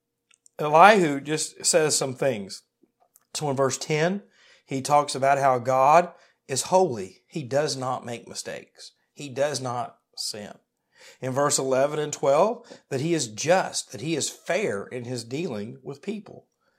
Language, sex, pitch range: English, male, 130-165 Hz